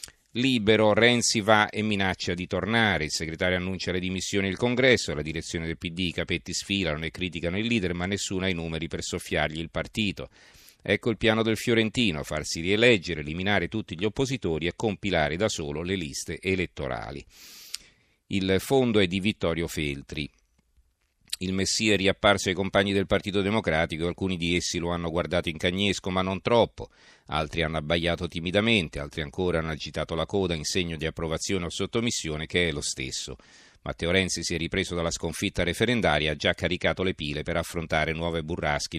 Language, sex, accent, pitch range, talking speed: Italian, male, native, 80-100 Hz, 180 wpm